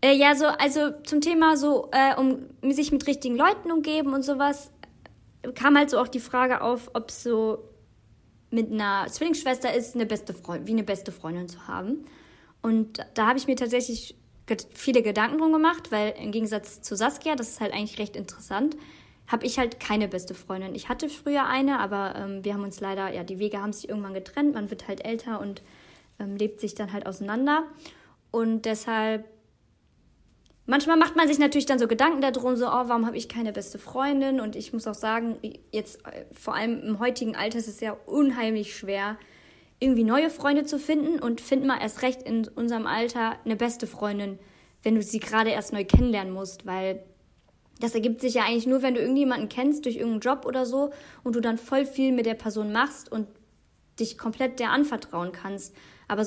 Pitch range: 210-270 Hz